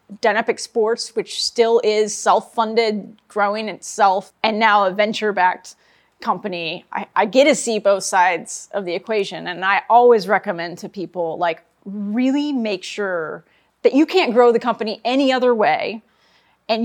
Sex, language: female, English